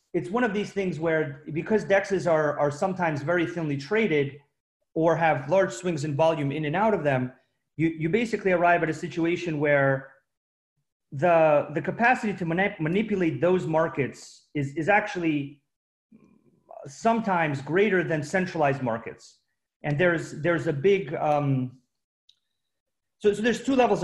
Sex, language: male, English